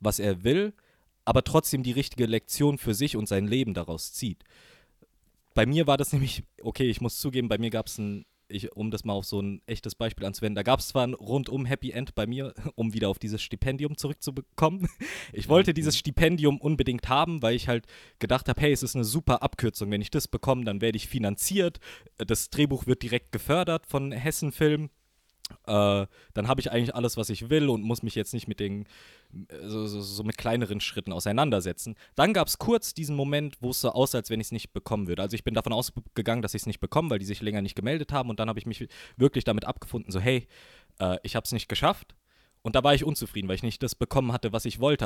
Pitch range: 110-140 Hz